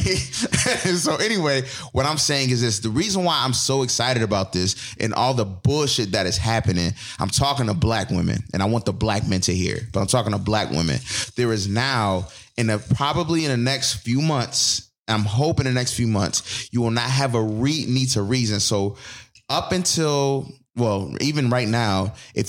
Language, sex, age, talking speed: English, male, 30-49, 190 wpm